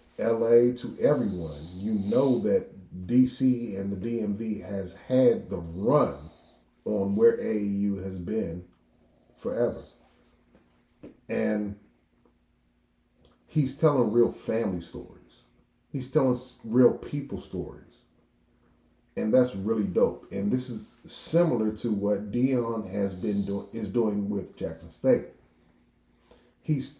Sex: male